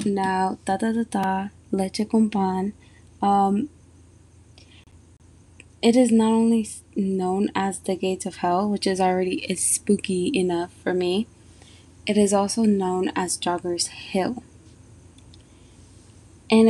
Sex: female